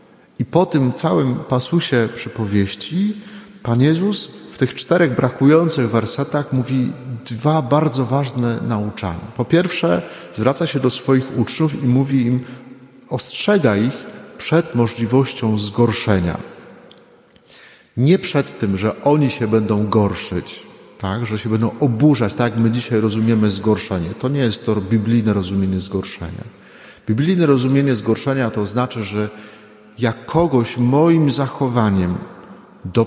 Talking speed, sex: 125 wpm, male